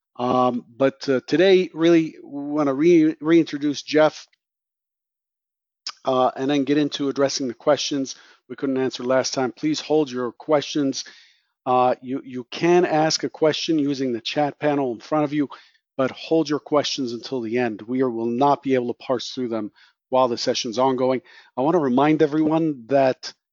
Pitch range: 120-145 Hz